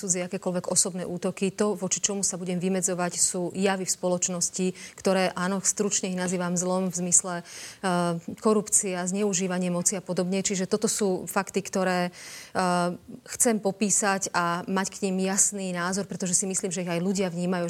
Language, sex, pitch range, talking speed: Slovak, female, 185-205 Hz, 165 wpm